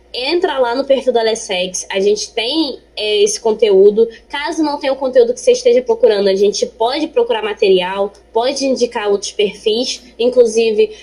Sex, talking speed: female, 165 wpm